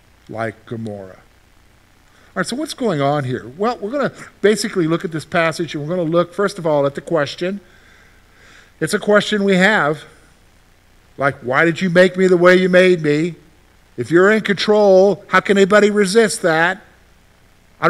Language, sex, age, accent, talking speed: English, male, 50-69, American, 185 wpm